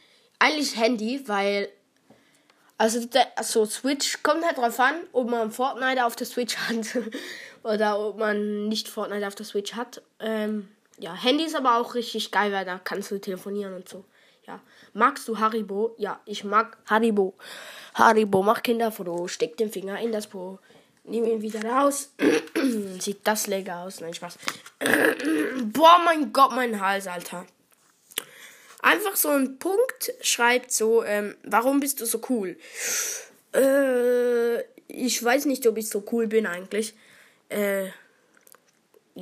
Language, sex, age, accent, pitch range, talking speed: German, female, 10-29, German, 210-260 Hz, 150 wpm